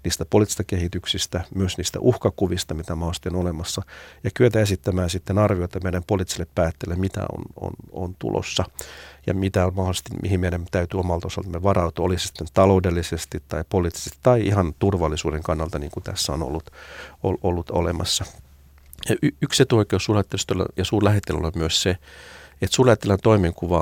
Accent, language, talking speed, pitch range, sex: native, Finnish, 150 wpm, 85-95 Hz, male